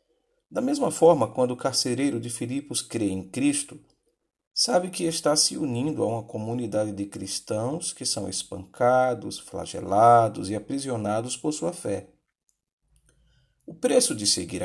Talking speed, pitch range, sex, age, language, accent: 140 wpm, 100-165 Hz, male, 50-69, Portuguese, Brazilian